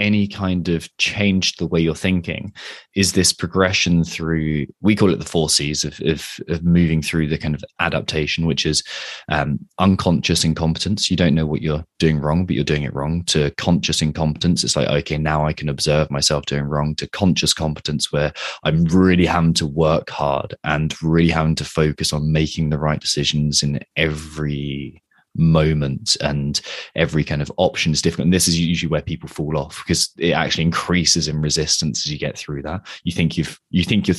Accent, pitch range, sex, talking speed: British, 75-90 Hz, male, 195 wpm